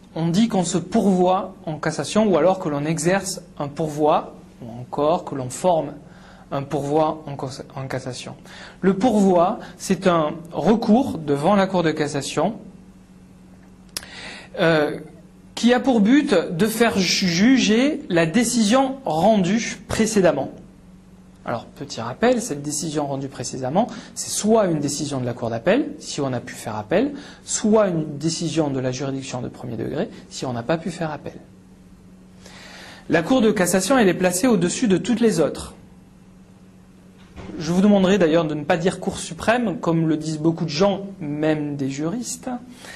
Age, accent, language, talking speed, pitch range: 30-49, French, French, 160 wpm, 145-195 Hz